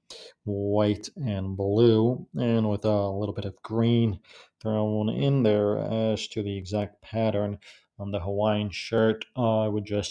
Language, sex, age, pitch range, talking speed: English, male, 40-59, 105-125 Hz, 155 wpm